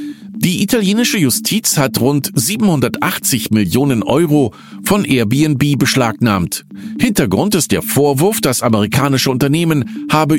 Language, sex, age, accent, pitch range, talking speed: German, male, 50-69, German, 115-180 Hz, 110 wpm